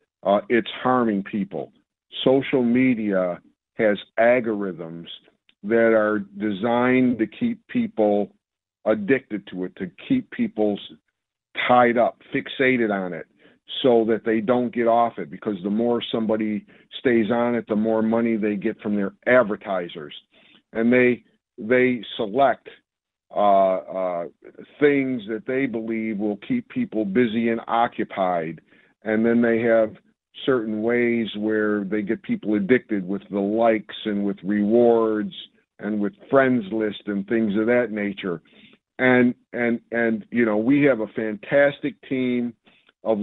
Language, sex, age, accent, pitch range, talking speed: English, male, 50-69, American, 105-120 Hz, 140 wpm